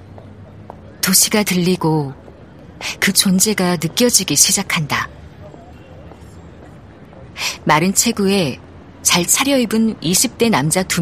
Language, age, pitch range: Korean, 40-59, 130-200 Hz